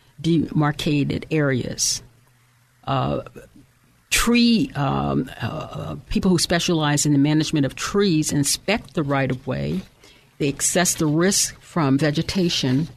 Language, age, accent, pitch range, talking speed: English, 50-69, American, 140-170 Hz, 105 wpm